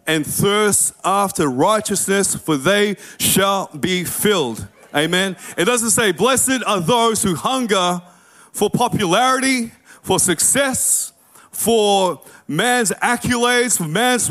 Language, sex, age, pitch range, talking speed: English, male, 30-49, 150-220 Hz, 115 wpm